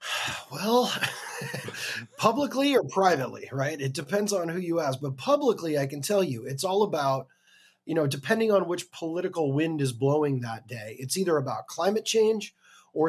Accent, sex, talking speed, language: American, male, 170 wpm, English